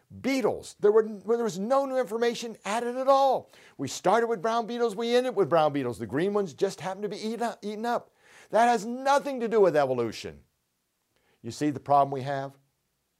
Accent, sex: American, male